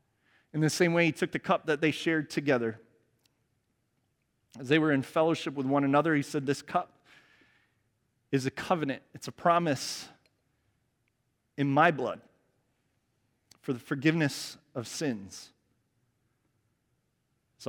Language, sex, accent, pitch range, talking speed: English, male, American, 115-140 Hz, 130 wpm